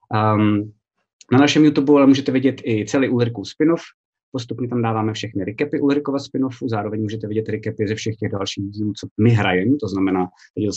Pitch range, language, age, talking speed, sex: 105-120 Hz, Czech, 20-39, 185 wpm, male